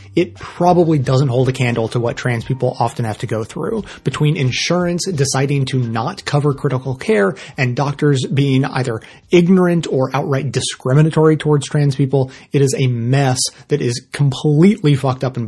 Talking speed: 170 wpm